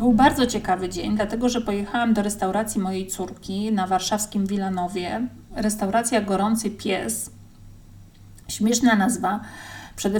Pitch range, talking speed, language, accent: 195-235 Hz, 120 wpm, Polish, native